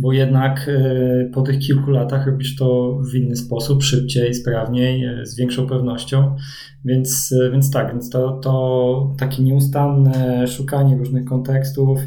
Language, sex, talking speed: Polish, male, 135 wpm